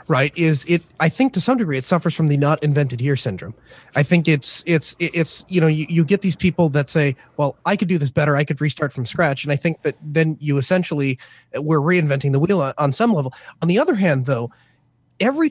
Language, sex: English, male